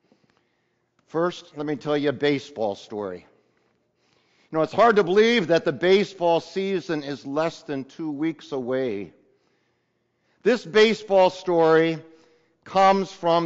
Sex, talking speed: male, 130 wpm